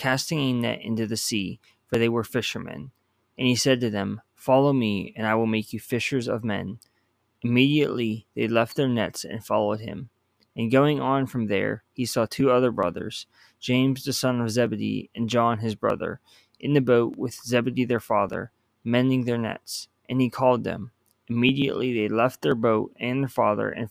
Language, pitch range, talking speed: English, 115-130 Hz, 190 wpm